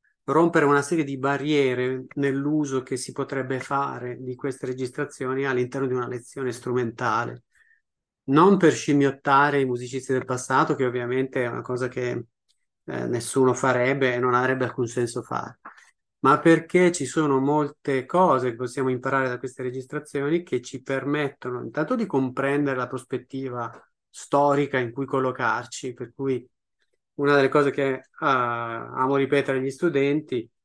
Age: 30-49